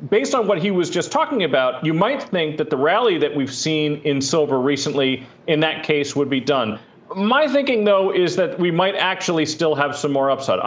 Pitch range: 140-185 Hz